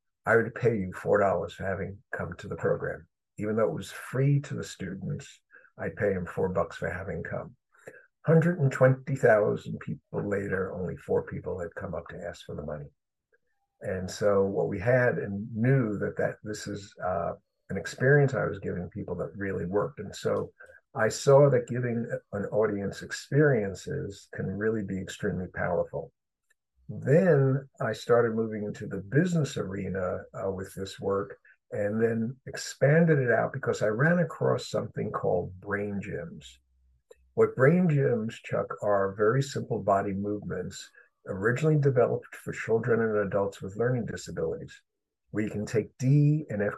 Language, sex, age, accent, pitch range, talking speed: English, male, 50-69, American, 95-135 Hz, 160 wpm